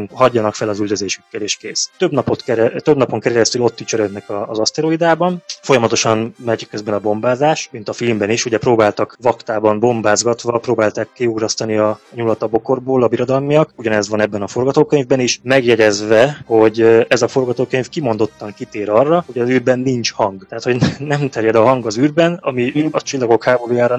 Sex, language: male, Hungarian